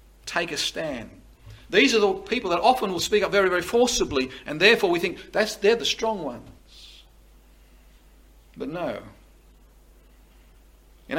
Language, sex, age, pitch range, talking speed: English, male, 50-69, 165-220 Hz, 145 wpm